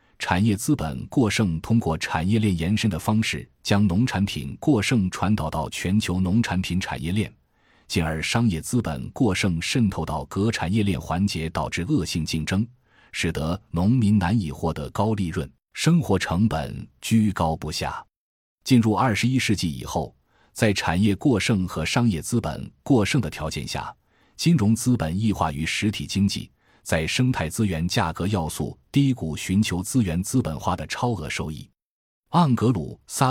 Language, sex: Chinese, male